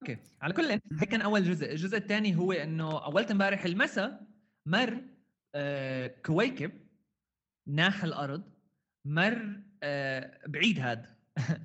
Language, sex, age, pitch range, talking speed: Arabic, male, 20-39, 125-170 Hz, 110 wpm